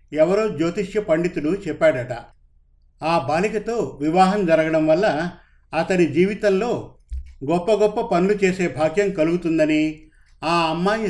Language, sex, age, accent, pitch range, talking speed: Telugu, male, 50-69, native, 145-190 Hz, 105 wpm